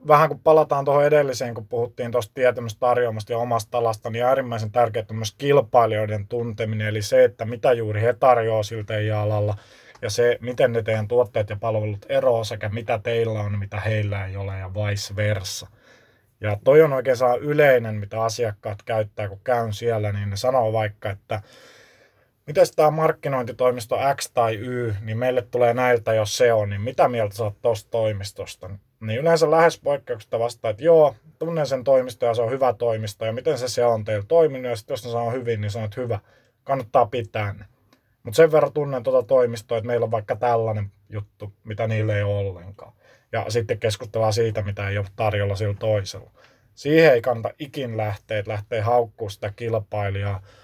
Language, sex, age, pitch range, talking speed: Finnish, male, 20-39, 105-125 Hz, 180 wpm